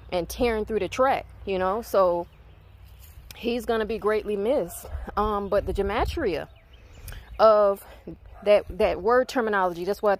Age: 20-39